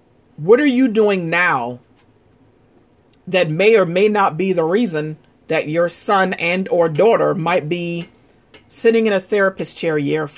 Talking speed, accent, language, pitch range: 155 wpm, American, English, 145-195 Hz